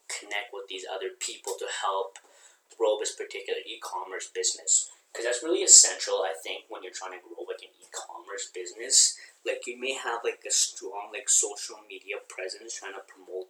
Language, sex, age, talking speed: English, male, 20-39, 180 wpm